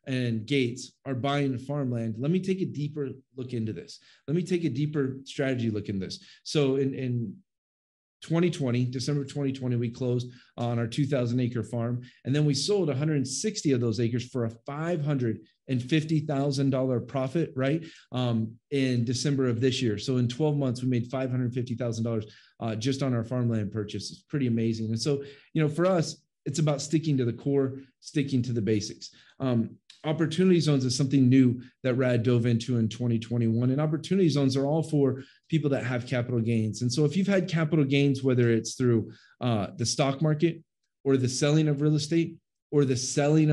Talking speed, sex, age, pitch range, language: 180 wpm, male, 30-49, 120-150 Hz, English